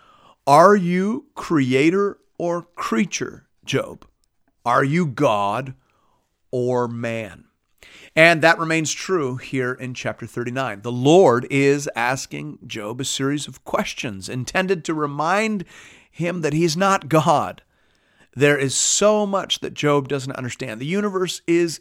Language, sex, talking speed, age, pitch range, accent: English, male, 130 wpm, 40-59, 125-170 Hz, American